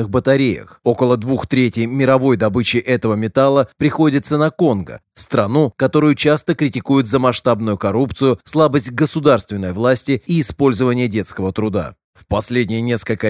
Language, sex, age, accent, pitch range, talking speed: Russian, male, 30-49, native, 110-140 Hz, 125 wpm